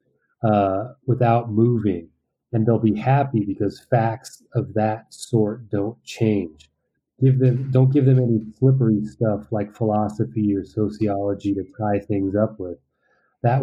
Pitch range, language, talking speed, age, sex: 100-115 Hz, English, 140 wpm, 30-49, male